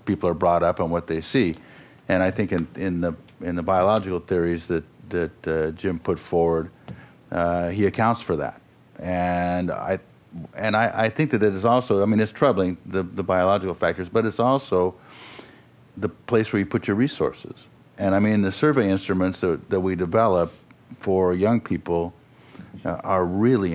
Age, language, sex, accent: 50-69, English, male, American